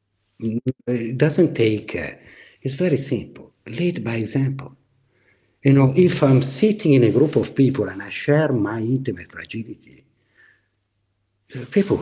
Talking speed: 135 wpm